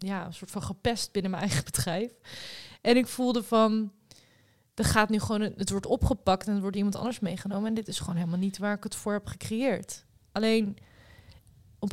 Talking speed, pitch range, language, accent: 200 wpm, 195-235 Hz, Dutch, Dutch